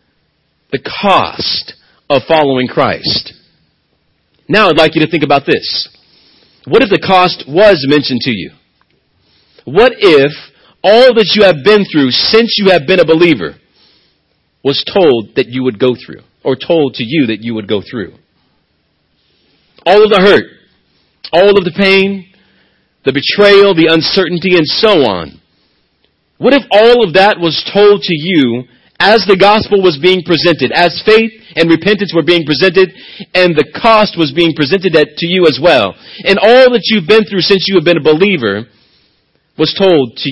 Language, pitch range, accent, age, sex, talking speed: English, 140-200 Hz, American, 40-59, male, 170 wpm